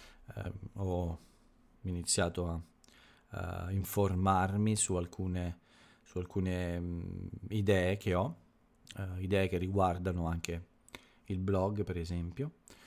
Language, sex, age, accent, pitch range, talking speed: Italian, male, 40-59, native, 85-105 Hz, 105 wpm